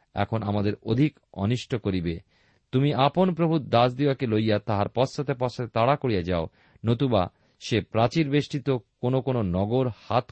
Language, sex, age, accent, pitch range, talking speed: Bengali, male, 40-59, native, 100-140 Hz, 140 wpm